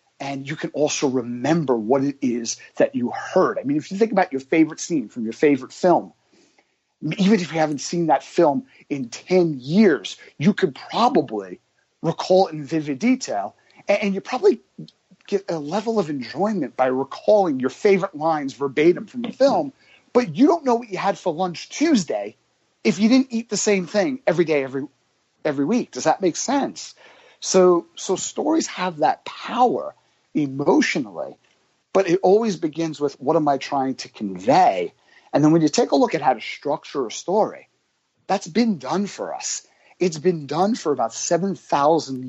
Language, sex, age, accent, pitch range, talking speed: English, male, 30-49, American, 140-205 Hz, 180 wpm